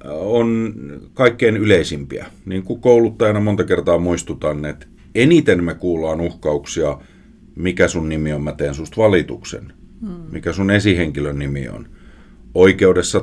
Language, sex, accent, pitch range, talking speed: Finnish, male, native, 75-100 Hz, 120 wpm